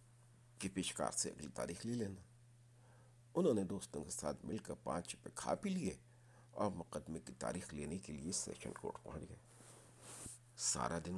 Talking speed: 170 wpm